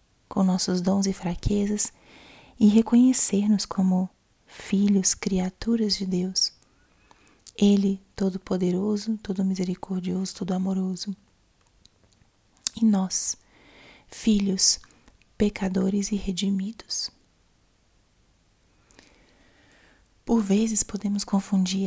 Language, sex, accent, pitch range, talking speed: Portuguese, female, Brazilian, 180-200 Hz, 70 wpm